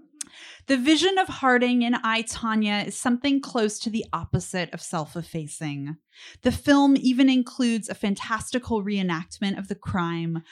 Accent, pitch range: American, 180-235 Hz